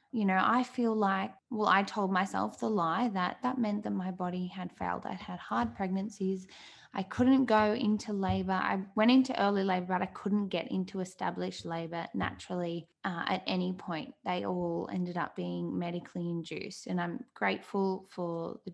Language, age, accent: English, 10-29, Australian